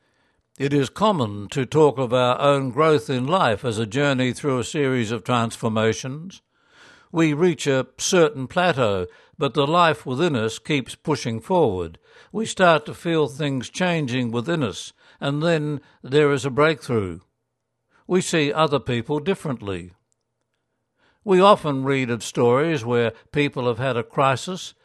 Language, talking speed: English, 150 wpm